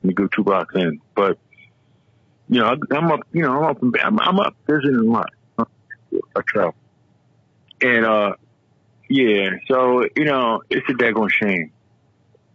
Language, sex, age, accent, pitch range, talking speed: English, male, 50-69, American, 100-150 Hz, 160 wpm